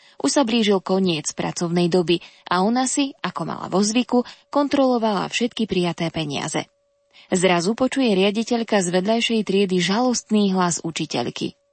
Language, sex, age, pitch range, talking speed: Slovak, female, 20-39, 185-240 Hz, 125 wpm